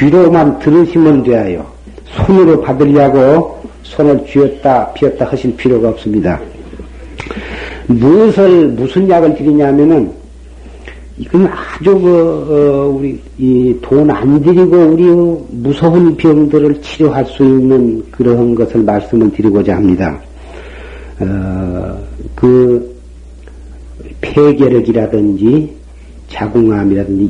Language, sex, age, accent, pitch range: Korean, male, 50-69, native, 100-140 Hz